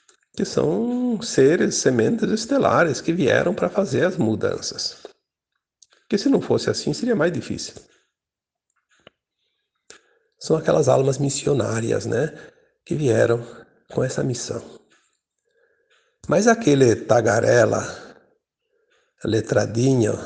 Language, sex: Portuguese, male